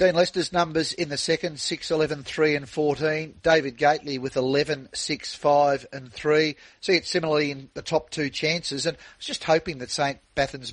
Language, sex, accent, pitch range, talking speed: English, male, Australian, 130-155 Hz, 195 wpm